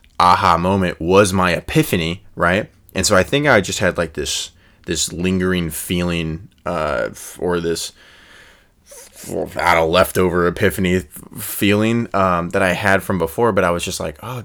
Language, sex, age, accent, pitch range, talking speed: English, male, 20-39, American, 85-95 Hz, 160 wpm